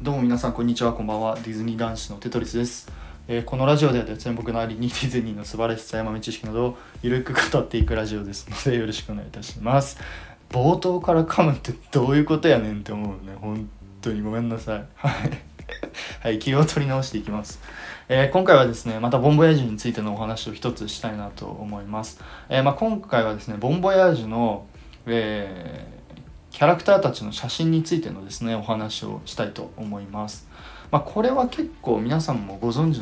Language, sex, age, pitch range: Japanese, male, 20-39, 105-140 Hz